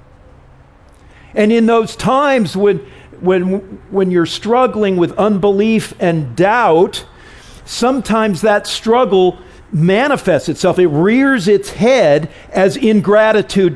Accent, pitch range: American, 120-190 Hz